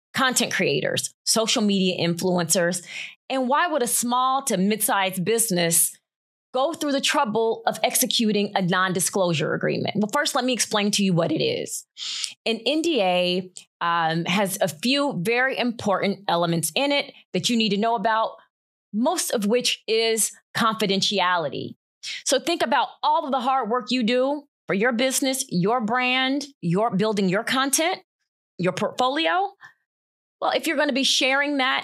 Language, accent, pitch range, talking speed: English, American, 190-265 Hz, 155 wpm